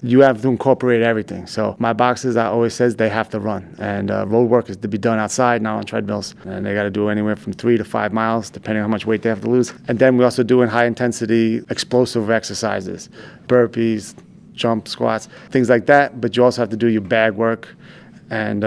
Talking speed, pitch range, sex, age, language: 235 wpm, 110-125 Hz, male, 30-49, English